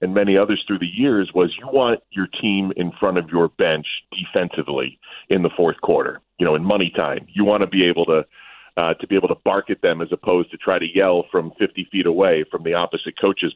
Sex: male